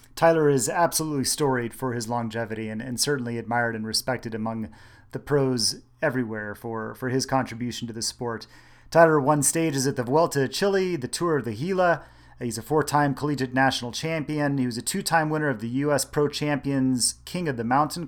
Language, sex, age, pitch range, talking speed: English, male, 30-49, 120-145 Hz, 195 wpm